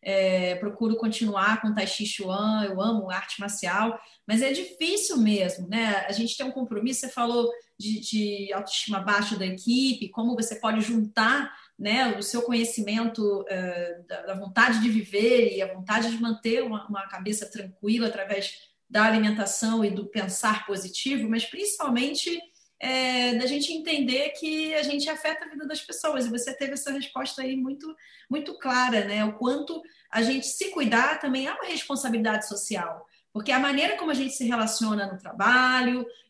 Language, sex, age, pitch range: Portuguese, female, 30-49, 210-260 Hz